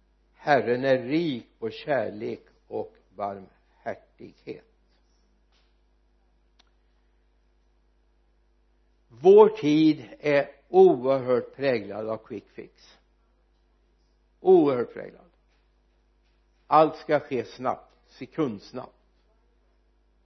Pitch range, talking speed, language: 110-165 Hz, 70 wpm, Swedish